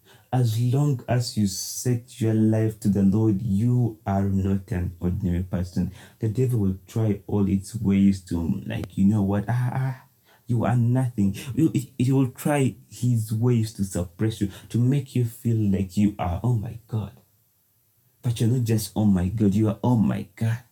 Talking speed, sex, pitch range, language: 185 wpm, male, 100-120 Hz, English